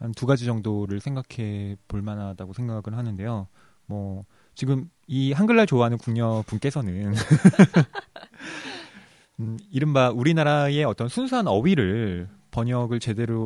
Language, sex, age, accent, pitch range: Korean, male, 20-39, native, 105-155 Hz